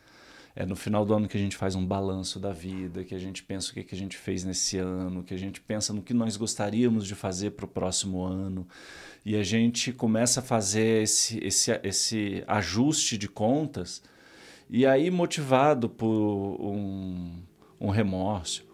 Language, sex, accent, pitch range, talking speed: Portuguese, male, Brazilian, 100-130 Hz, 185 wpm